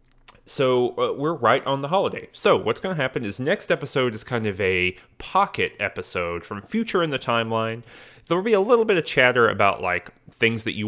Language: English